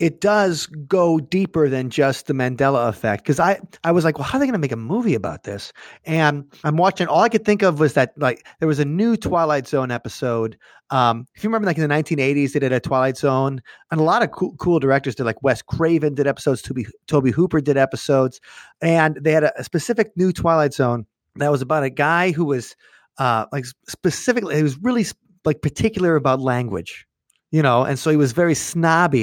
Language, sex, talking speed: English, male, 225 wpm